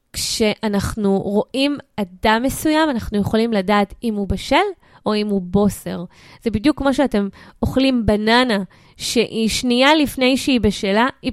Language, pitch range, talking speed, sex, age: Hebrew, 215-300 Hz, 140 wpm, female, 20-39